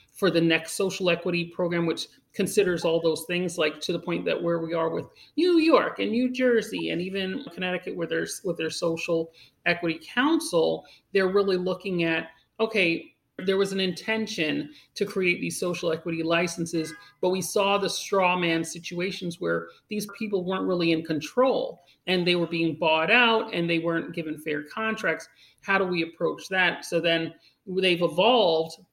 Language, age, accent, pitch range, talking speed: English, 40-59, American, 165-200 Hz, 175 wpm